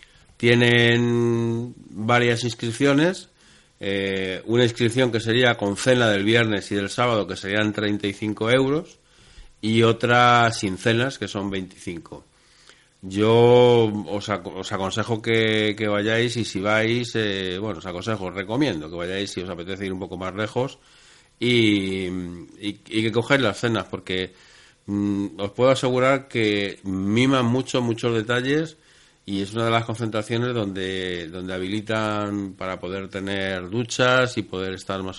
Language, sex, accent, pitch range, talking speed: Spanish, male, Spanish, 95-115 Hz, 145 wpm